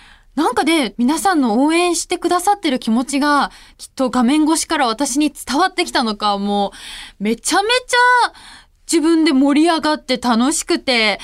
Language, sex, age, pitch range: Japanese, female, 20-39, 240-335 Hz